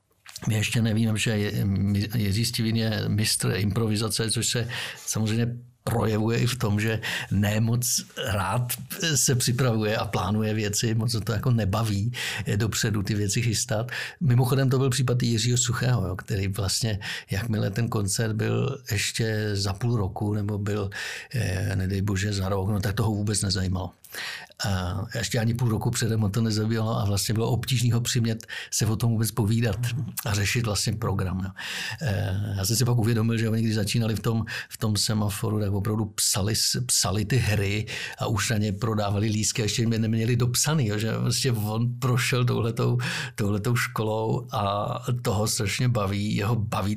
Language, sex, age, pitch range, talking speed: Czech, male, 60-79, 105-120 Hz, 160 wpm